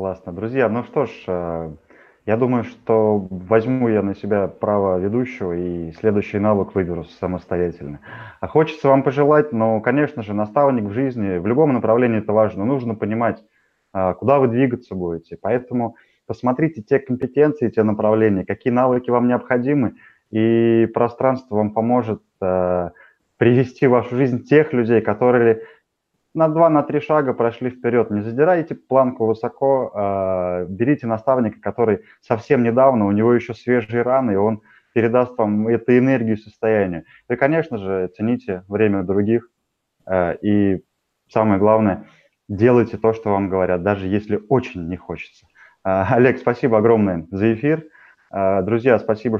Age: 20-39